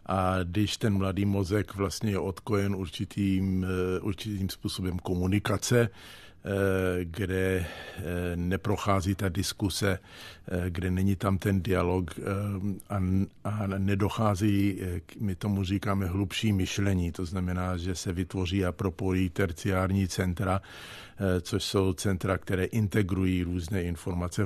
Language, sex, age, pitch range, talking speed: Czech, male, 50-69, 90-100 Hz, 110 wpm